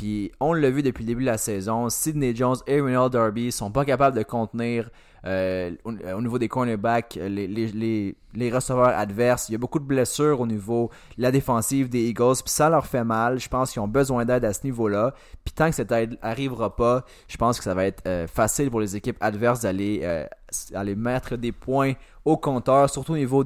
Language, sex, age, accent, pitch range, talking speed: French, male, 20-39, Canadian, 110-135 Hz, 225 wpm